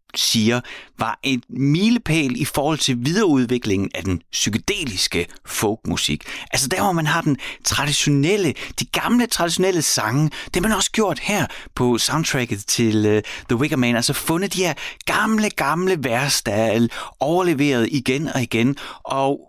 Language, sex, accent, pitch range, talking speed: Danish, male, native, 115-155 Hz, 150 wpm